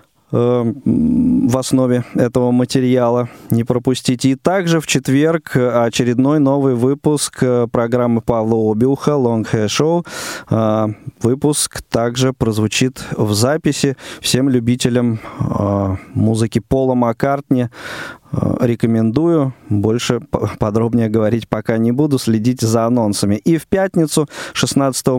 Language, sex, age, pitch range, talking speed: Russian, male, 20-39, 115-145 Hz, 100 wpm